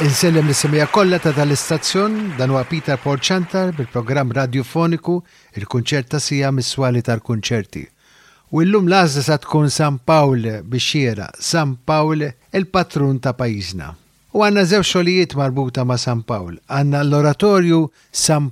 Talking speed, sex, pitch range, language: 120 wpm, male, 125-160 Hz, English